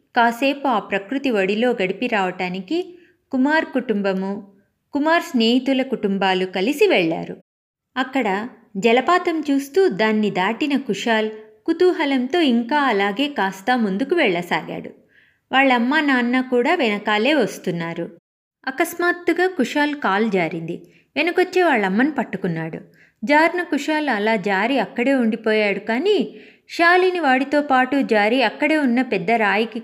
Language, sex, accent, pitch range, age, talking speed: Telugu, female, native, 210-295 Hz, 20-39, 100 wpm